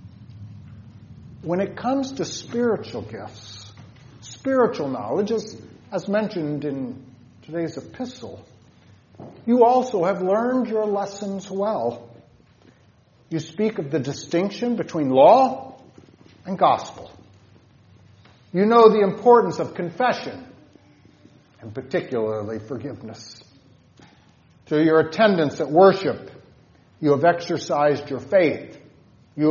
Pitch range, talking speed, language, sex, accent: 125-185 Hz, 100 wpm, English, male, American